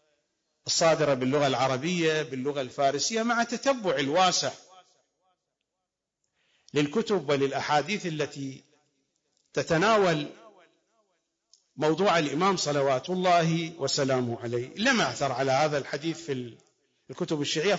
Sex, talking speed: male, 90 wpm